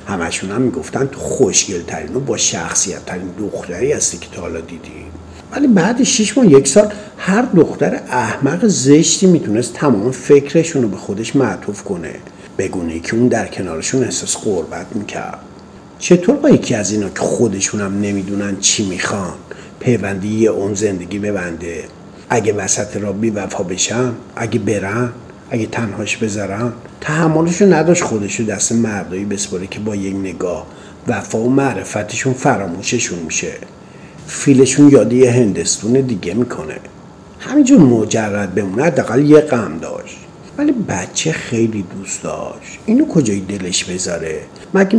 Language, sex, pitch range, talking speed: Persian, male, 100-160 Hz, 140 wpm